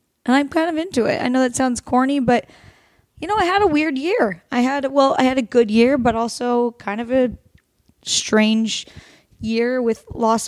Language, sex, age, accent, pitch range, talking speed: English, female, 10-29, American, 220-265 Hz, 205 wpm